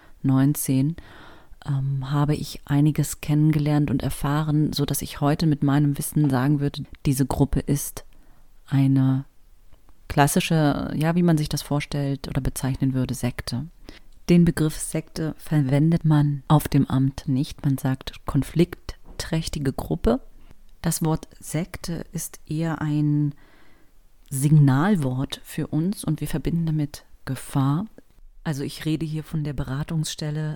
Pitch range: 140-160 Hz